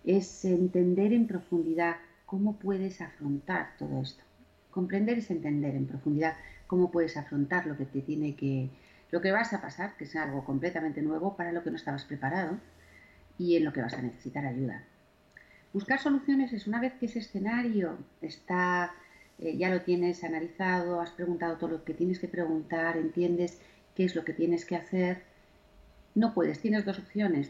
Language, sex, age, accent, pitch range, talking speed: Spanish, female, 40-59, Spanish, 155-190 Hz, 175 wpm